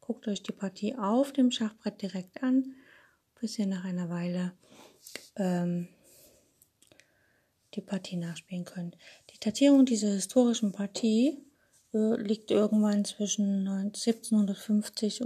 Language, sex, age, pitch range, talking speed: German, female, 30-49, 185-220 Hz, 115 wpm